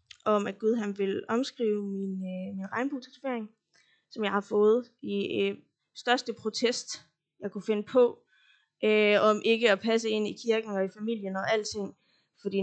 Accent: native